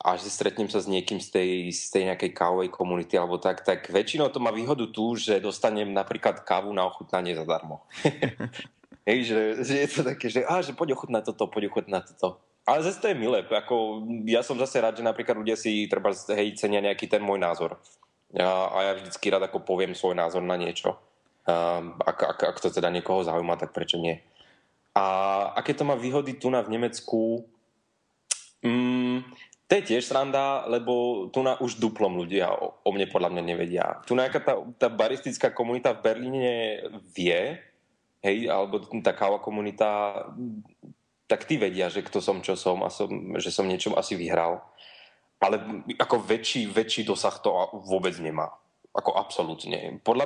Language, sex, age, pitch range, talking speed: Slovak, male, 20-39, 95-120 Hz, 175 wpm